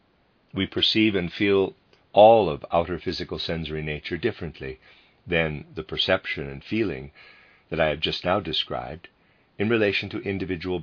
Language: English